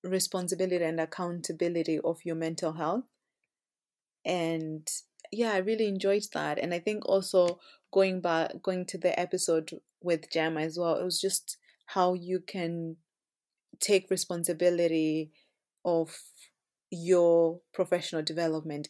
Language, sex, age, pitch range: English, female, 30-49, 160-185 Hz